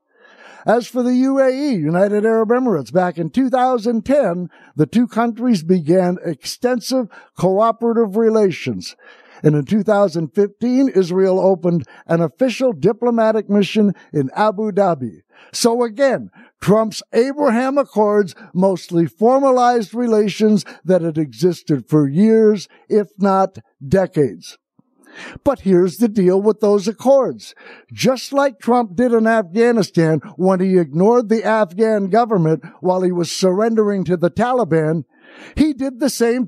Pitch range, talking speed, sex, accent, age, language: 185-240 Hz, 125 wpm, male, American, 60-79, English